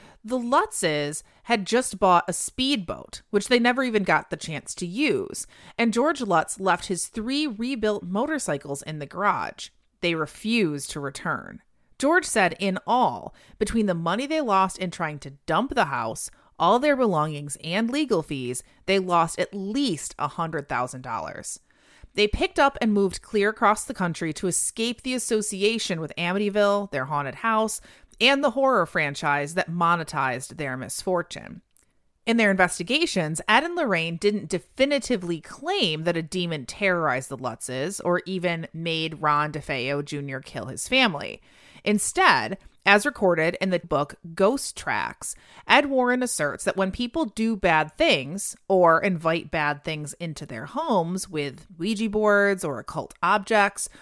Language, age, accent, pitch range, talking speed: English, 30-49, American, 160-225 Hz, 150 wpm